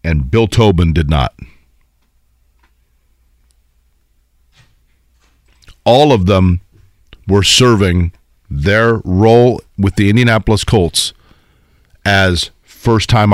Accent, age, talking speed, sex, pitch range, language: American, 50-69, 80 wpm, male, 80-110 Hz, English